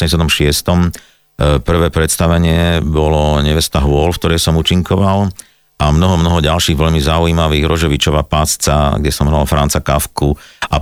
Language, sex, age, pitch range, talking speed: Slovak, male, 50-69, 75-85 Hz, 135 wpm